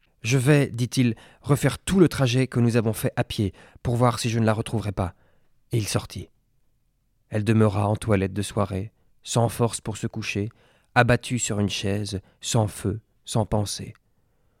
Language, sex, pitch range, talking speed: French, male, 105-120 Hz, 175 wpm